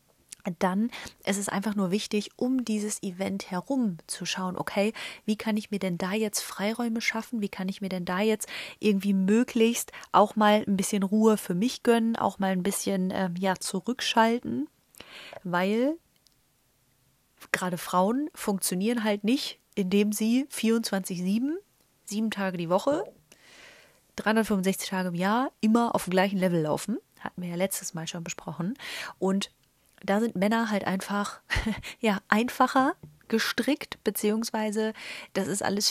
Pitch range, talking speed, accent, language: 185-220 Hz, 150 wpm, German, German